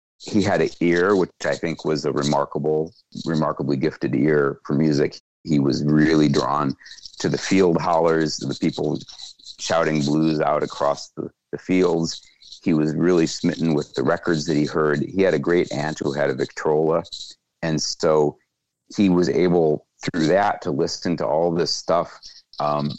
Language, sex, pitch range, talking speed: English, male, 75-85 Hz, 170 wpm